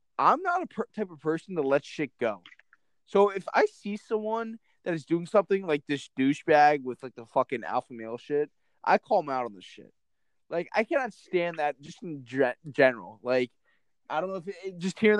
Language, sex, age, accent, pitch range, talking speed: English, male, 20-39, American, 140-210 Hz, 215 wpm